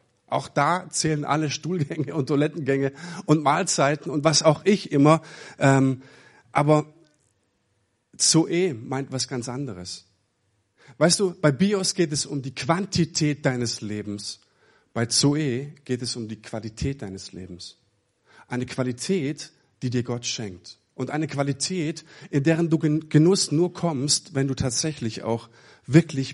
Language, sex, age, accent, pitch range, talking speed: German, male, 50-69, German, 120-160 Hz, 135 wpm